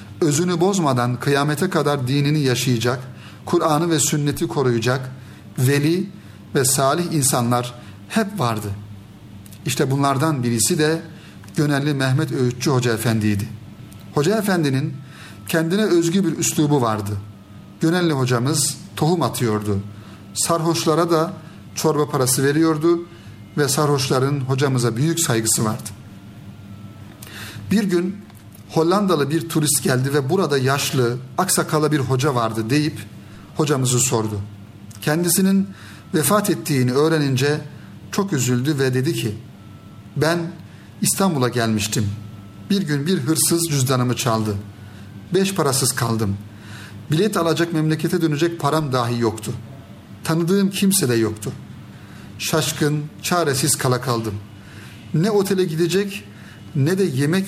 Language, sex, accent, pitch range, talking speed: Turkish, male, native, 110-160 Hz, 110 wpm